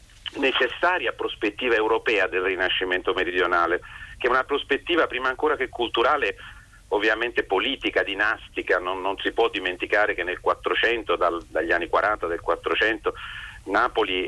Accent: native